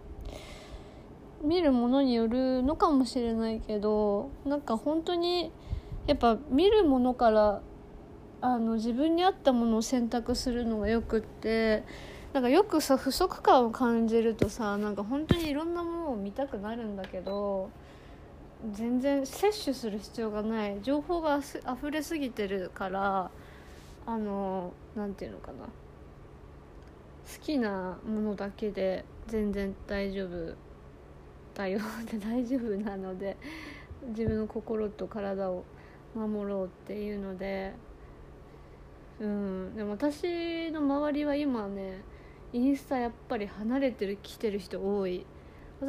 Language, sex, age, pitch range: Japanese, female, 20-39, 195-260 Hz